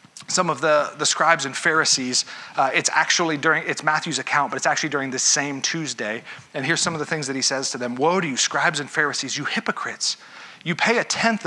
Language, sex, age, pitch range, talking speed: English, male, 40-59, 145-190 Hz, 230 wpm